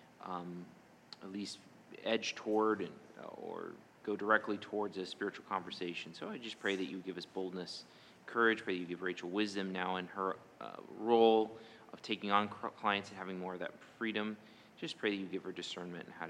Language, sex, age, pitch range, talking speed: English, male, 30-49, 95-110 Hz, 195 wpm